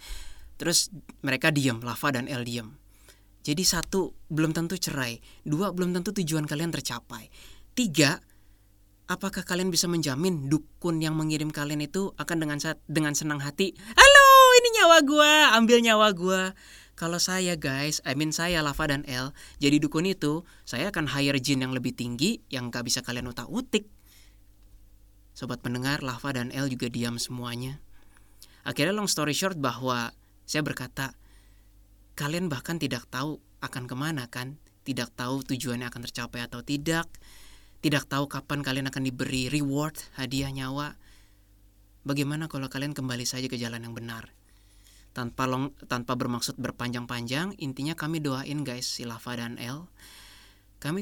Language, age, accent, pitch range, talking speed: Indonesian, 20-39, native, 120-155 Hz, 150 wpm